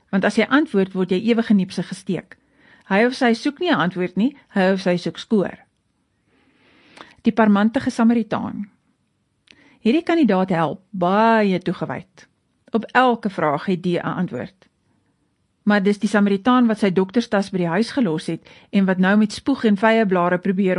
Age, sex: 40-59, female